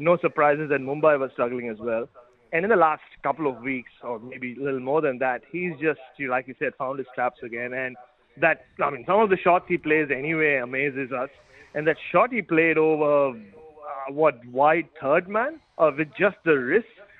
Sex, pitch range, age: male, 135-170 Hz, 30-49